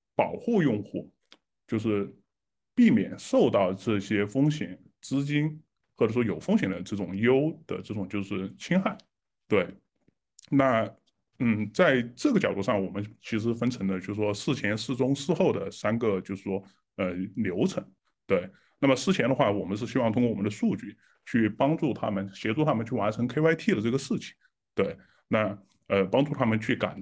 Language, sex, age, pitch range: Chinese, male, 20-39, 100-140 Hz